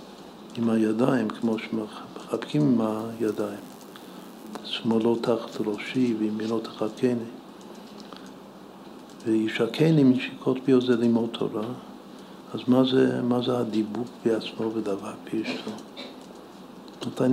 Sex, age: male, 60-79